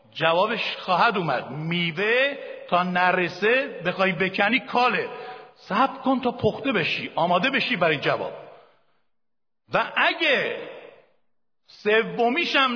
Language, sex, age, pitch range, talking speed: Persian, male, 60-79, 170-245 Hz, 100 wpm